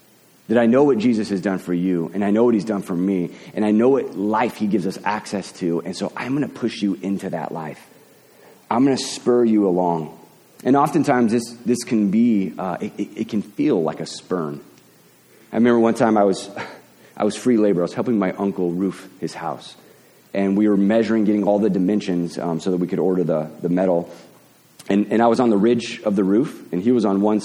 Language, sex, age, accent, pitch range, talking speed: English, male, 30-49, American, 95-115 Hz, 235 wpm